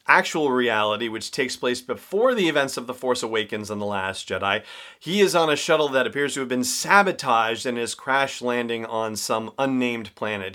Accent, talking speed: American, 195 wpm